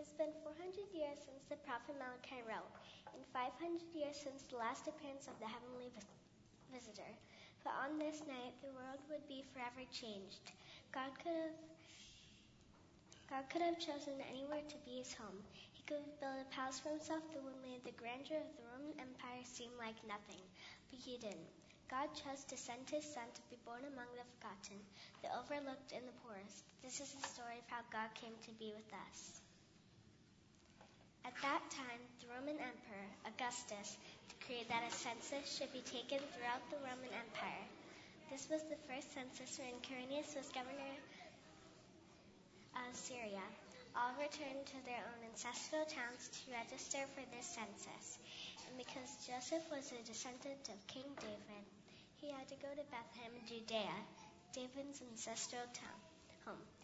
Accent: American